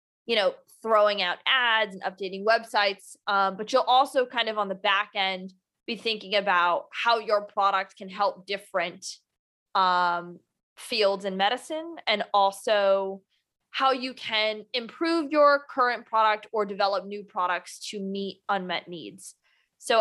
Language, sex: English, female